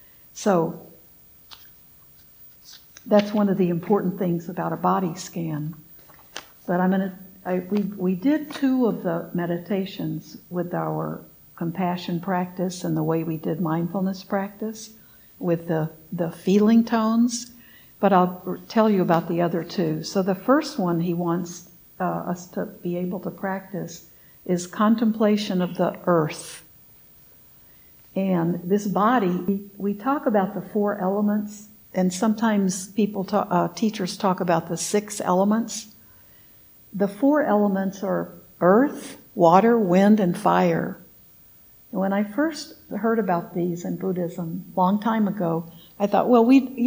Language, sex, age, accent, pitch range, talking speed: English, female, 60-79, American, 175-210 Hz, 140 wpm